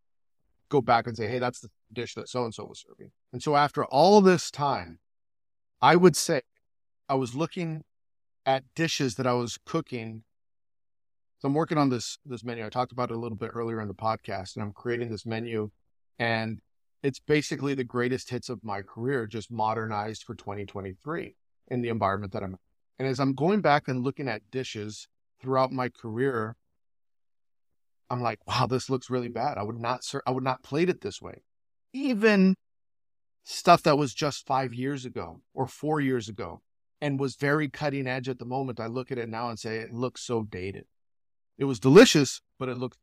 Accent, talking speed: American, 195 wpm